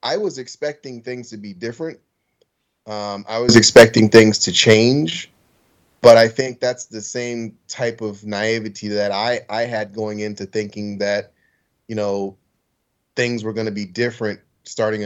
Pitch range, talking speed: 100-115 Hz, 160 wpm